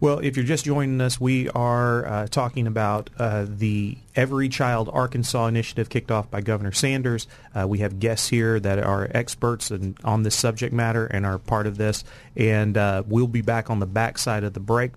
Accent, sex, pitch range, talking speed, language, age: American, male, 105-120 Hz, 200 wpm, English, 30-49